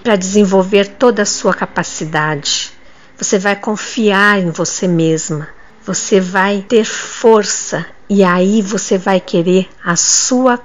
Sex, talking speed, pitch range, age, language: female, 130 wpm, 180-235 Hz, 50-69, Portuguese